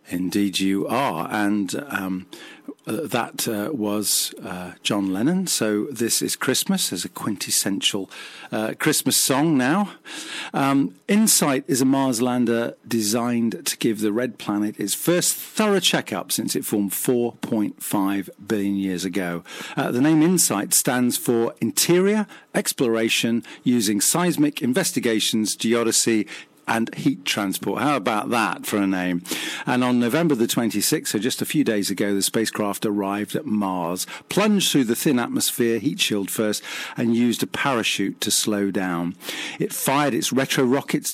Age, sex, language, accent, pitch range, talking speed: 50-69, male, English, British, 100-130 Hz, 150 wpm